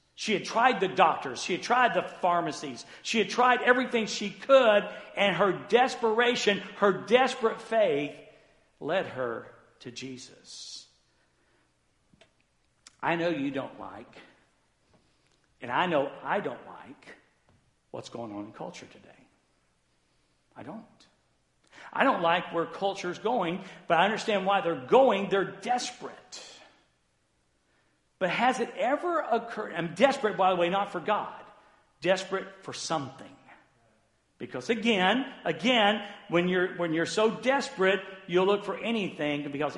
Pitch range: 160-230 Hz